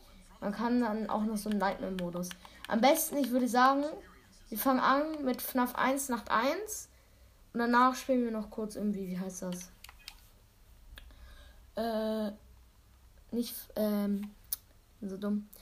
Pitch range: 195-235 Hz